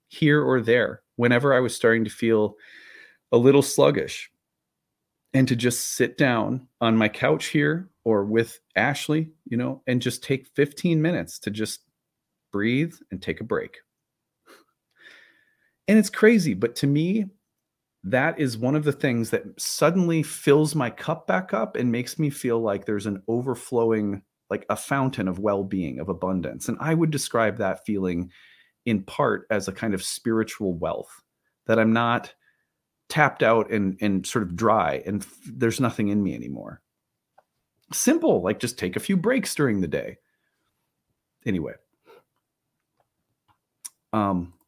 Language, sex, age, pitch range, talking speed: English, male, 30-49, 110-160 Hz, 155 wpm